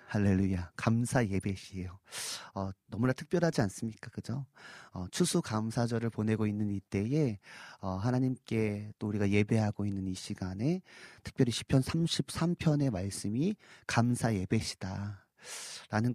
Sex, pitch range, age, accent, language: male, 110-165 Hz, 40-59, native, Korean